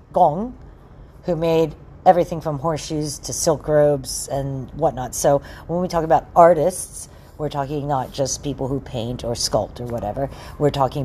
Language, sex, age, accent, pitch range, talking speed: English, female, 40-59, American, 135-180 Hz, 165 wpm